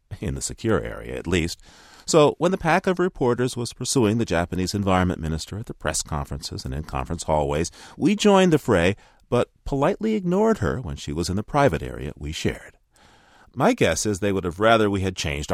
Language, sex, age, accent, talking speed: English, male, 40-59, American, 205 wpm